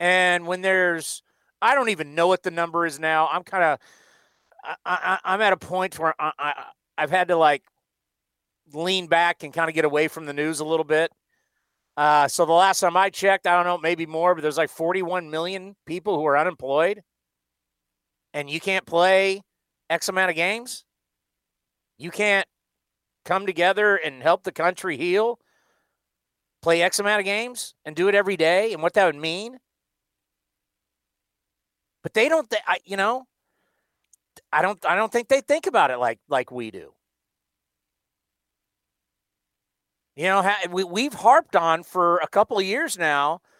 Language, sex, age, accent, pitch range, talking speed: English, male, 40-59, American, 160-205 Hz, 175 wpm